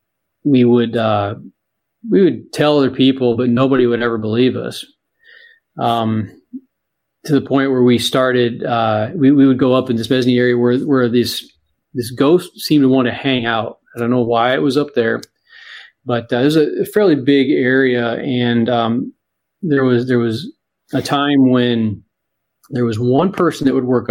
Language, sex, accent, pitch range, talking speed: English, male, American, 115-135 Hz, 180 wpm